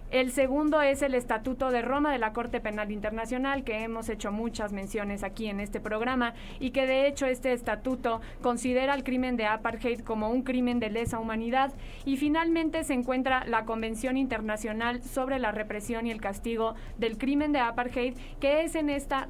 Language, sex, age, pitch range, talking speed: English, female, 20-39, 230-275 Hz, 185 wpm